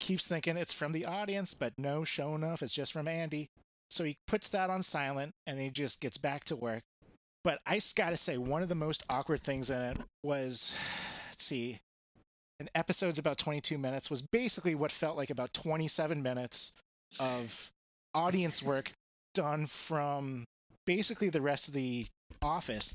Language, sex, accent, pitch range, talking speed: English, male, American, 120-155 Hz, 175 wpm